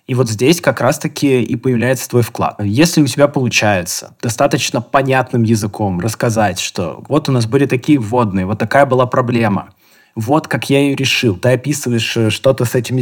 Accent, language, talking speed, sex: native, Russian, 180 wpm, male